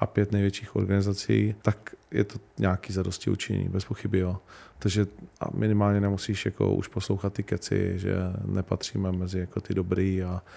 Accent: native